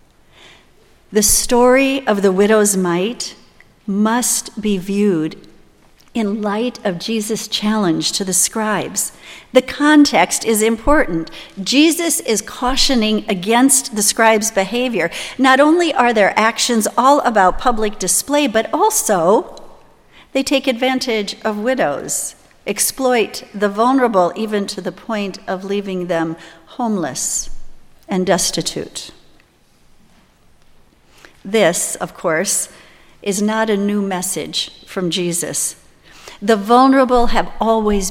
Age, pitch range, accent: 50-69, 185-235 Hz, American